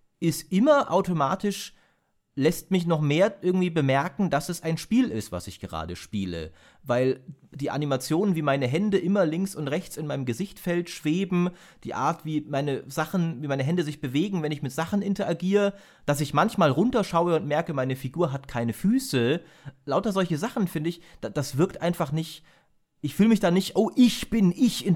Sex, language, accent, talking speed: male, German, German, 185 wpm